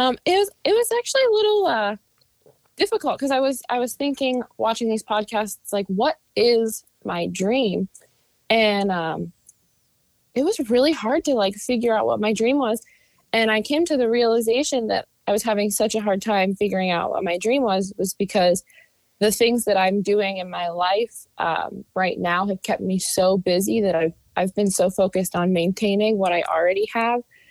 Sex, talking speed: female, 190 wpm